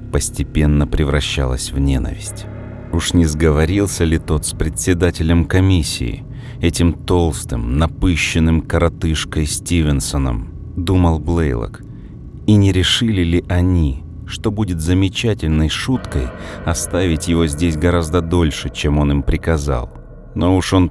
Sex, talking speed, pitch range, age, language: male, 115 wpm, 75-95 Hz, 40-59, Russian